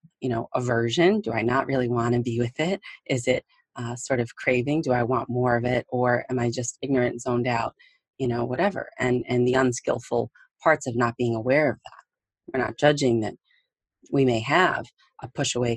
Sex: female